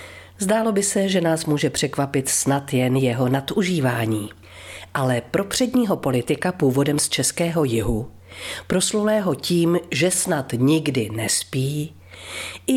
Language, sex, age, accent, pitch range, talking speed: Czech, female, 40-59, native, 130-185 Hz, 120 wpm